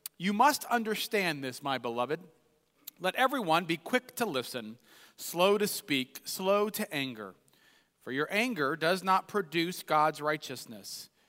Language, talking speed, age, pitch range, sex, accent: English, 140 wpm, 40-59, 150-205 Hz, male, American